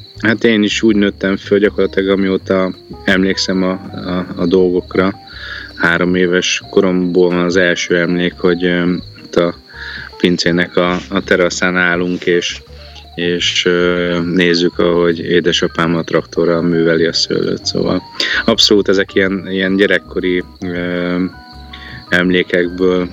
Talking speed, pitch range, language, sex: 120 wpm, 90-95 Hz, Hungarian, male